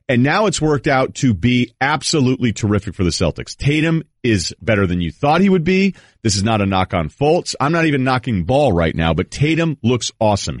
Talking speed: 220 wpm